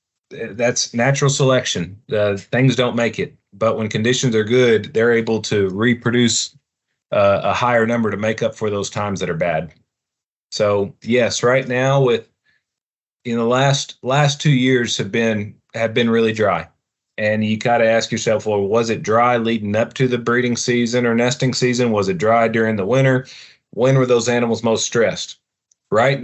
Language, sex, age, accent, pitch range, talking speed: English, male, 30-49, American, 110-130 Hz, 180 wpm